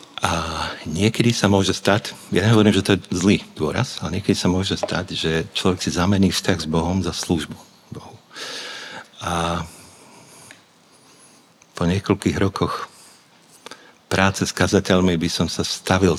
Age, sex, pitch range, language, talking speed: 50-69, male, 85-100 Hz, Slovak, 140 wpm